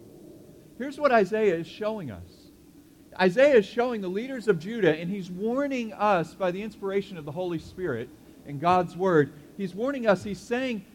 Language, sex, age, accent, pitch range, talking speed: English, male, 40-59, American, 150-210 Hz, 175 wpm